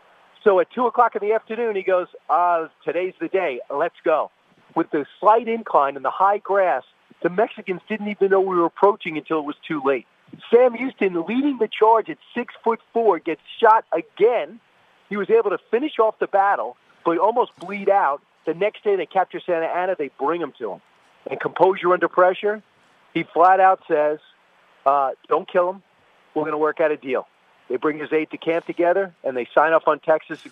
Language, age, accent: English, 40-59, American